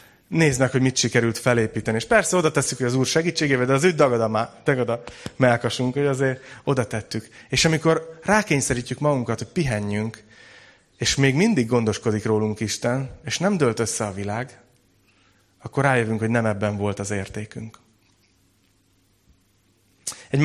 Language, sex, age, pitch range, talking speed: Hungarian, male, 30-49, 110-140 Hz, 150 wpm